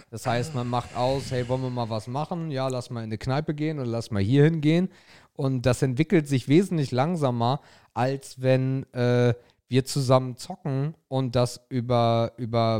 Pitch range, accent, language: 115-150 Hz, German, German